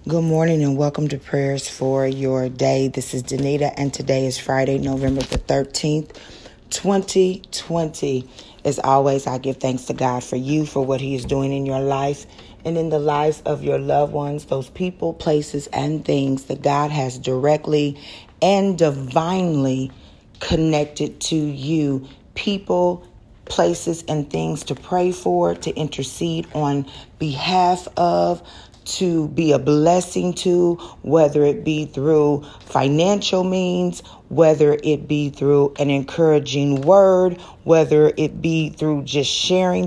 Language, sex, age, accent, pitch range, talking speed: English, female, 40-59, American, 135-170 Hz, 145 wpm